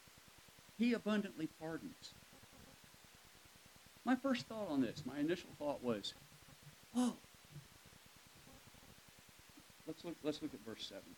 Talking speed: 95 wpm